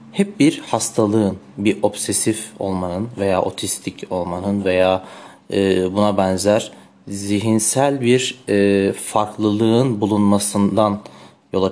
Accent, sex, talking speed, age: native, male, 85 wpm, 30-49